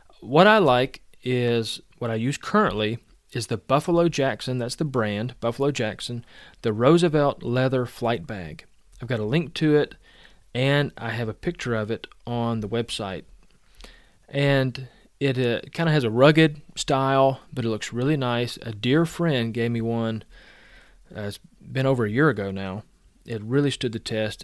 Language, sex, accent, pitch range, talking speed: English, male, American, 115-140 Hz, 170 wpm